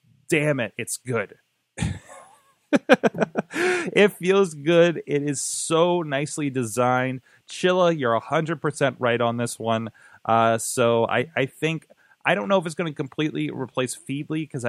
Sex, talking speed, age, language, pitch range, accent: male, 145 wpm, 30-49, English, 110-140 Hz, American